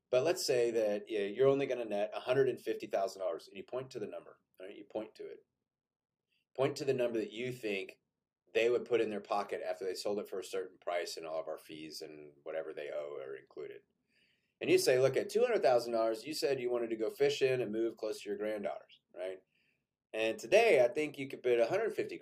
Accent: American